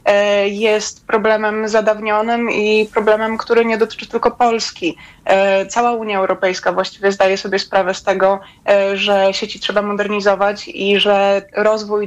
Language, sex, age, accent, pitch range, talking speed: Polish, female, 20-39, native, 200-225 Hz, 130 wpm